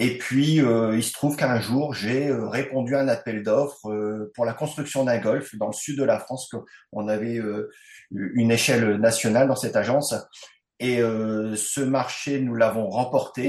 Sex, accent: male, French